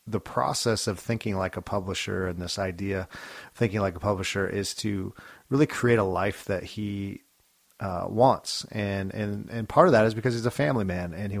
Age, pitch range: 30-49, 100-120 Hz